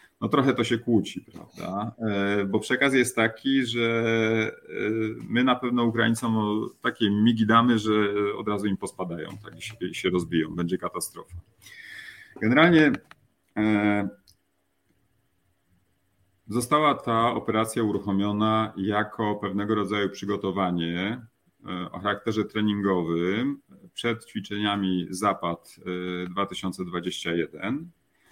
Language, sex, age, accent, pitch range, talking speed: Polish, male, 30-49, native, 90-115 Hz, 95 wpm